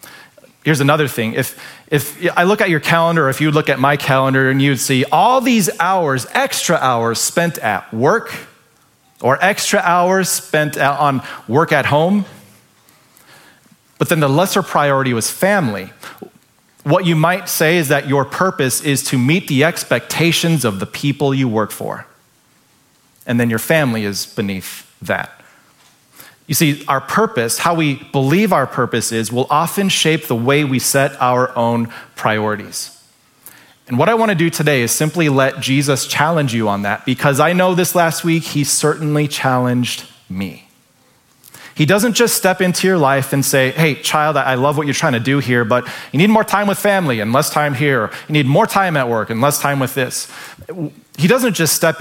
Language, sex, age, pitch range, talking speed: English, male, 30-49, 125-165 Hz, 185 wpm